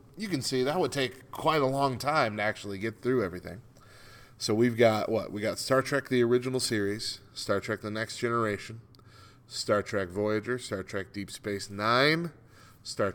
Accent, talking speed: American, 185 wpm